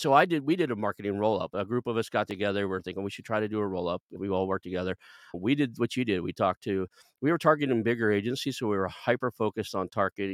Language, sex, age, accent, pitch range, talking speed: English, male, 40-59, American, 90-105 Hz, 275 wpm